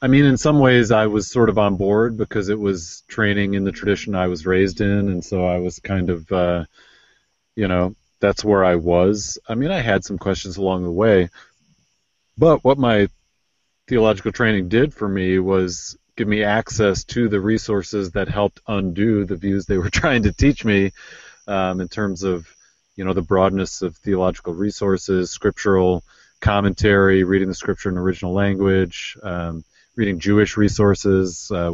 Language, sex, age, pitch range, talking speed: English, male, 30-49, 90-105 Hz, 175 wpm